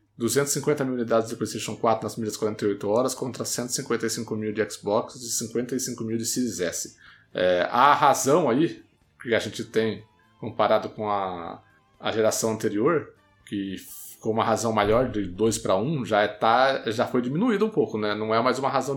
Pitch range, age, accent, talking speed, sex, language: 110-130 Hz, 20-39, Brazilian, 185 wpm, male, Portuguese